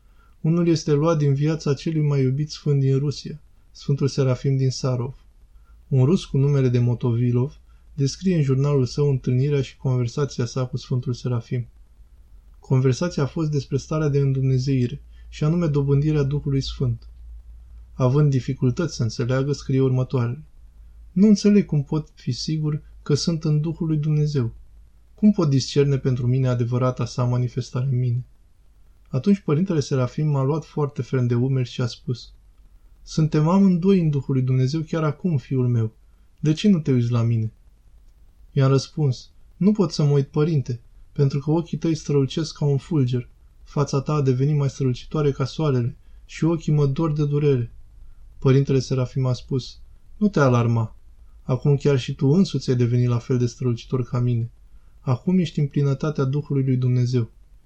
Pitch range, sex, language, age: 125-150 Hz, male, Romanian, 20-39